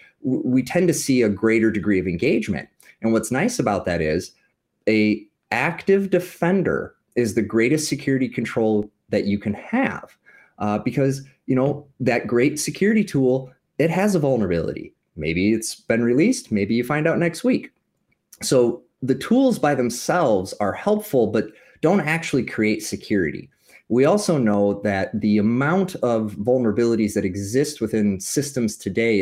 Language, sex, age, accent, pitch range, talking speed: English, male, 30-49, American, 105-140 Hz, 150 wpm